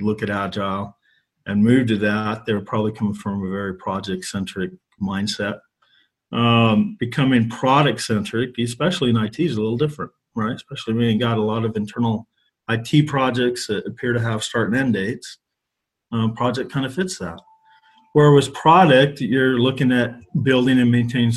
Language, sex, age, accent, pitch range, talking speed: English, male, 40-59, American, 110-130 Hz, 165 wpm